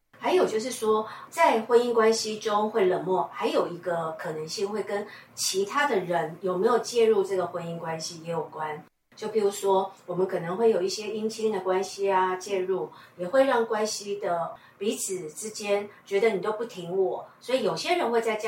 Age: 50-69